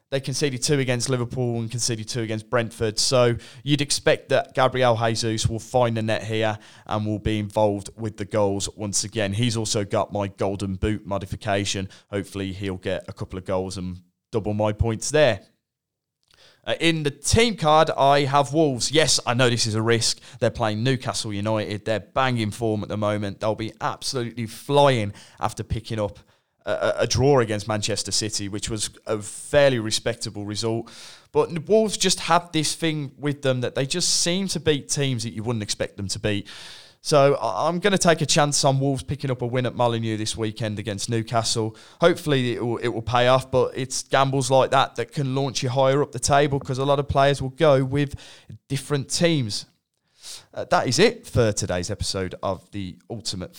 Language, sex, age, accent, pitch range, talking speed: English, male, 20-39, British, 105-140 Hz, 195 wpm